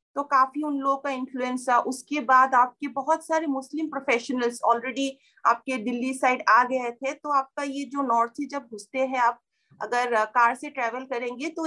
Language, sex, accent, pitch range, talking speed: Hindi, female, native, 240-295 Hz, 190 wpm